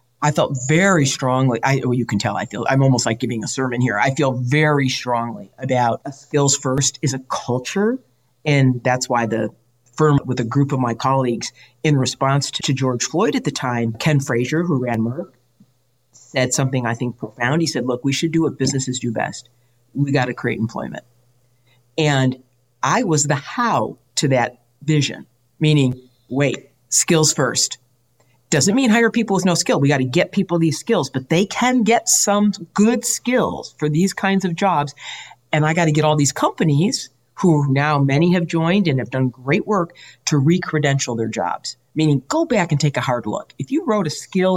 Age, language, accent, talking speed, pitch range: 50-69, English, American, 195 wpm, 125-170 Hz